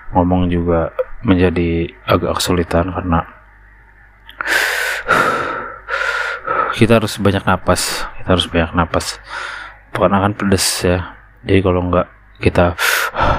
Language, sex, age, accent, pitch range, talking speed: Indonesian, male, 20-39, native, 85-100 Hz, 100 wpm